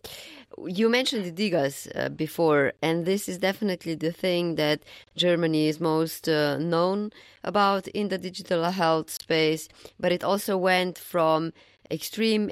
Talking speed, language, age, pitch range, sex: 140 wpm, English, 20-39, 155-180 Hz, female